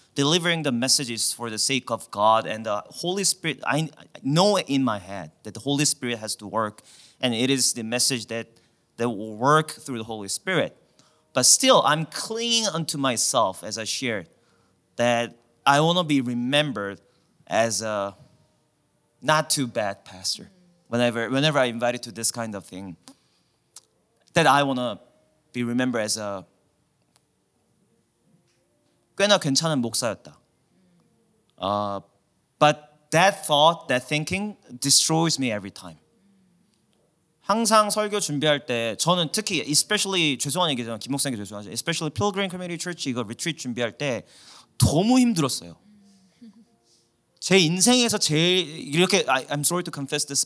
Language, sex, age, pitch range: Korean, male, 30-49, 115-165 Hz